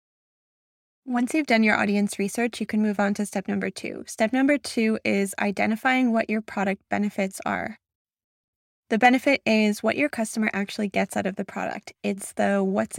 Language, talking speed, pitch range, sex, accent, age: English, 180 wpm, 200-230 Hz, female, American, 10-29